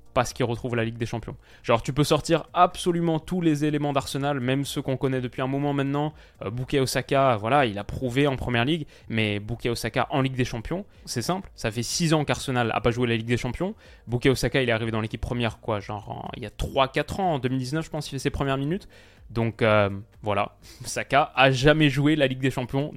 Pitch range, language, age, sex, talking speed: 120-150 Hz, French, 20-39, male, 230 wpm